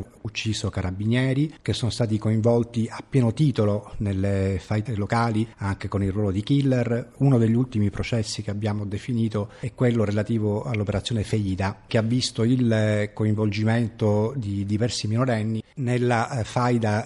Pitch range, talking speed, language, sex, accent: 100-120 Hz, 140 wpm, Italian, male, native